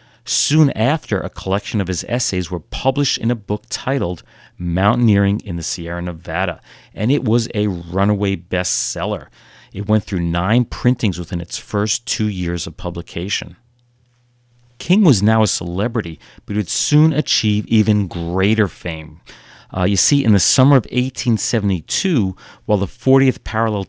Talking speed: 155 wpm